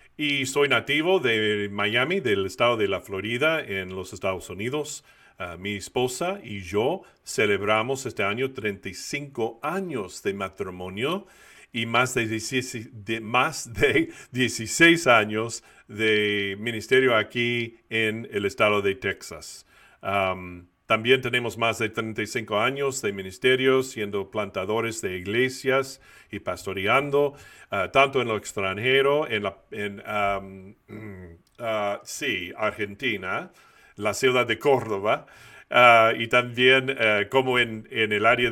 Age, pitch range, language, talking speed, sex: 40-59, 100-130 Hz, Spanish, 120 wpm, male